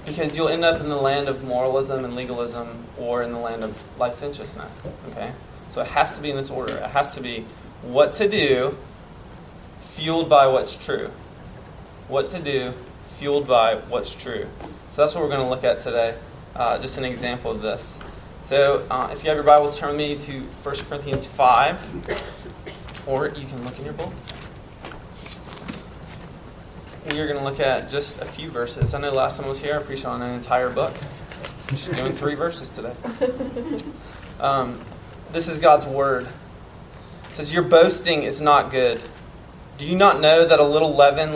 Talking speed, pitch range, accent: 185 wpm, 125-155 Hz, American